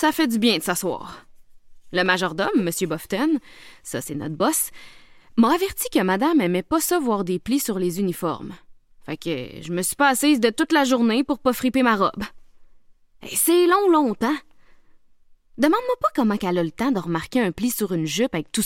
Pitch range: 175-245 Hz